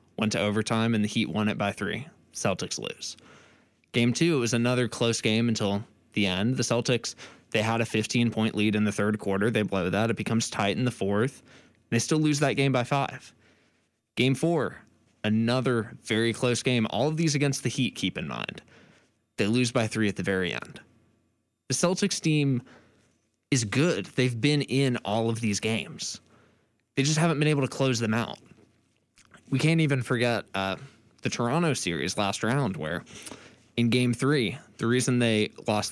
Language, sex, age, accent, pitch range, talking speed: English, male, 20-39, American, 105-130 Hz, 185 wpm